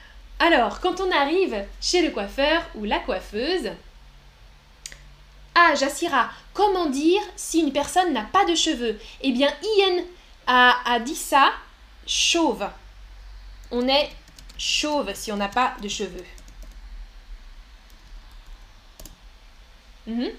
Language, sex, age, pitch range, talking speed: French, female, 10-29, 240-340 Hz, 115 wpm